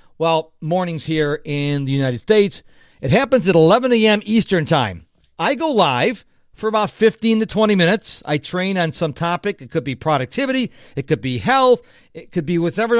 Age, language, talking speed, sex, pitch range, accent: 50-69, English, 185 wpm, male, 160-220 Hz, American